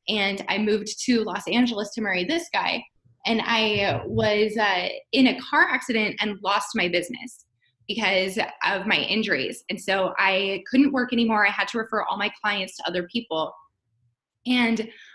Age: 20-39